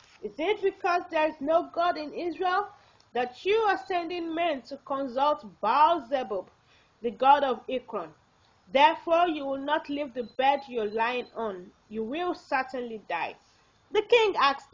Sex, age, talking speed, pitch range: female, 30-49, 160 wpm, 235-350 Hz